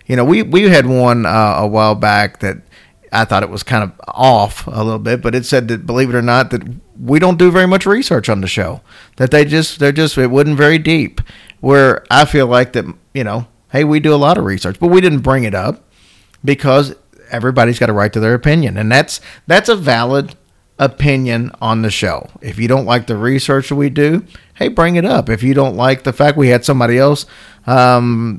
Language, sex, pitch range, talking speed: English, male, 115-145 Hz, 230 wpm